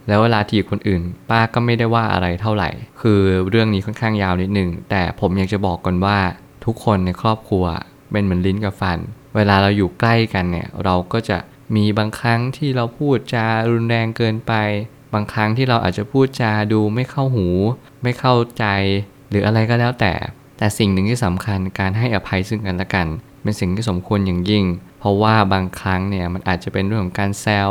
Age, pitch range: 20-39, 95-115 Hz